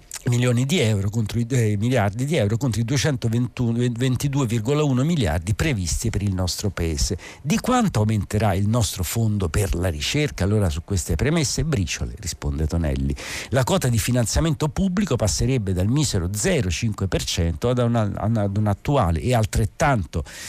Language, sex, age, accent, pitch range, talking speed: Italian, male, 50-69, native, 95-130 Hz, 145 wpm